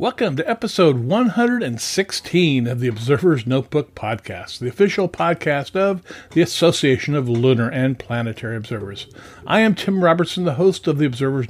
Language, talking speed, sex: English, 150 wpm, male